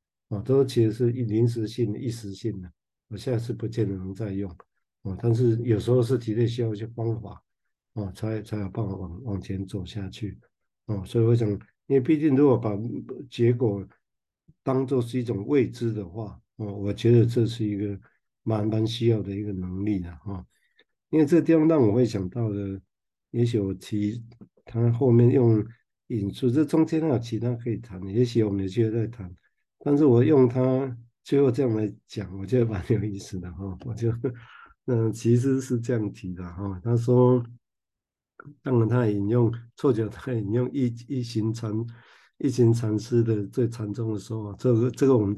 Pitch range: 105-120 Hz